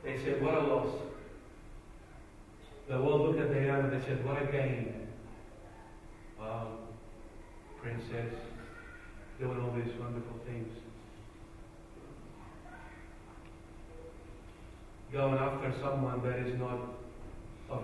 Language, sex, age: English, male, 50-69